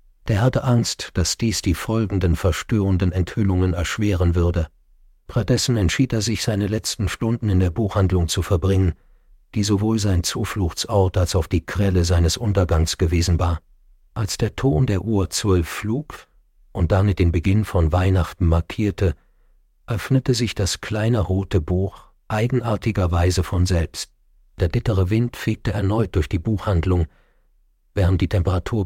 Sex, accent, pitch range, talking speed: male, German, 90-105 Hz, 145 wpm